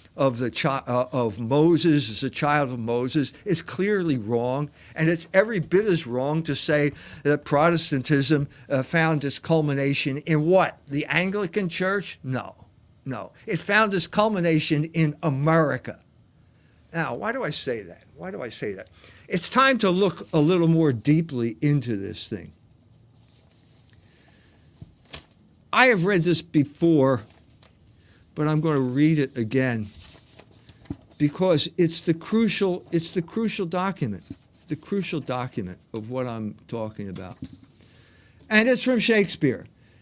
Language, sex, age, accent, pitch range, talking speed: English, male, 60-79, American, 130-185 Hz, 140 wpm